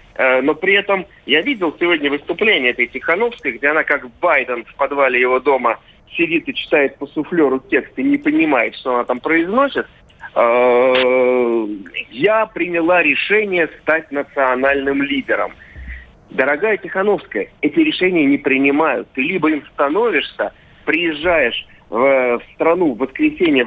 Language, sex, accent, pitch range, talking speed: Russian, male, native, 135-210 Hz, 130 wpm